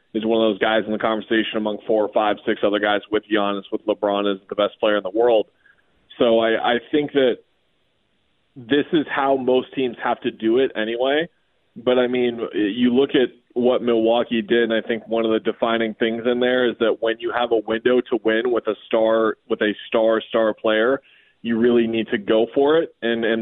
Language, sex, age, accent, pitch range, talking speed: English, male, 20-39, American, 110-120 Hz, 220 wpm